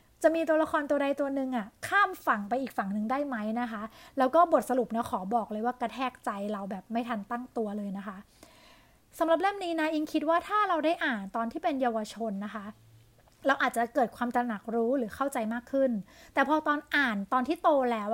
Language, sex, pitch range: Thai, female, 230-295 Hz